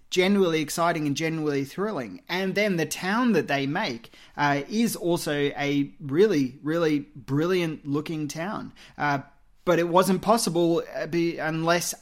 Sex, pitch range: male, 150-190 Hz